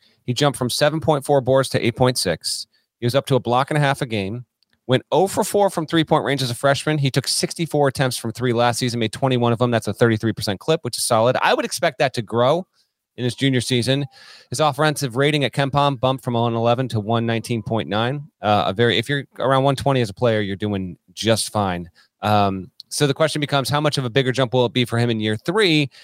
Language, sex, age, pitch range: English, male, 30-49, 115-145 Hz